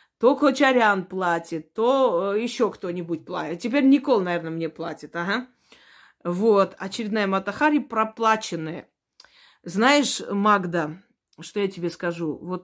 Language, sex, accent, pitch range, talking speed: Russian, female, native, 185-250 Hz, 115 wpm